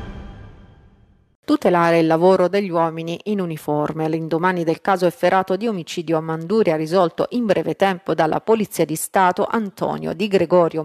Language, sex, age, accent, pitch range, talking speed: Italian, female, 30-49, native, 165-200 Hz, 145 wpm